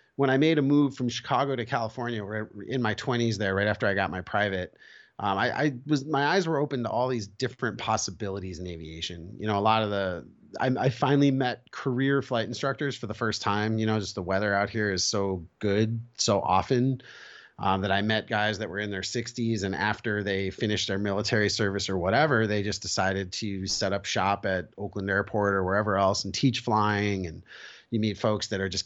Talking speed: 220 wpm